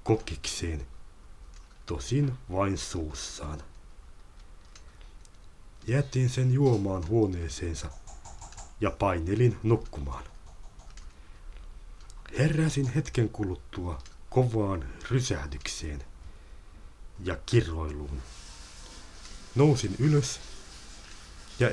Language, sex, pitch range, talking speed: Finnish, male, 75-105 Hz, 60 wpm